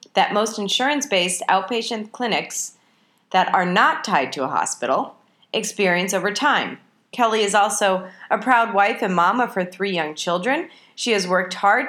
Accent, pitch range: American, 190-240 Hz